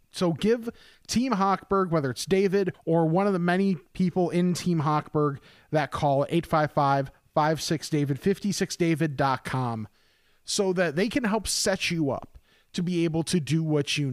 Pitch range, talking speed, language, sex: 140-175 Hz, 150 wpm, English, male